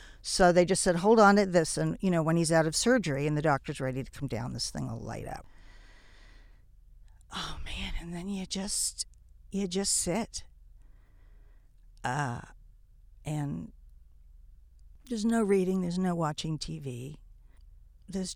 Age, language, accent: 50-69, English, American